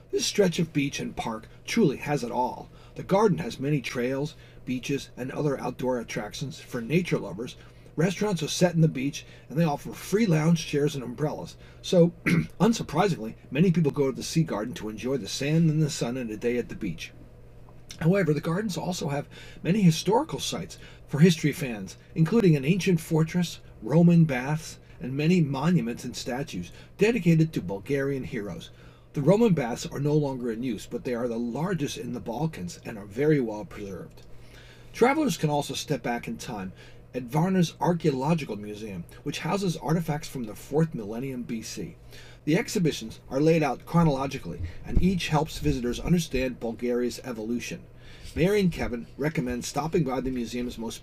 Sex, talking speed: male, 175 wpm